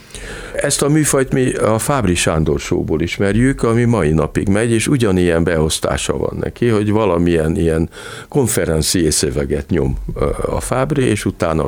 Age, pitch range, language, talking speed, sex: 60-79, 80-105 Hz, Hungarian, 140 wpm, male